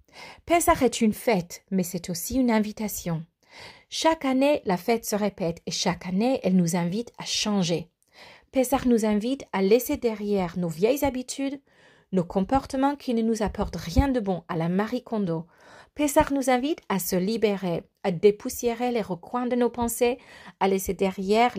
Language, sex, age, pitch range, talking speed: French, female, 40-59, 185-260 Hz, 170 wpm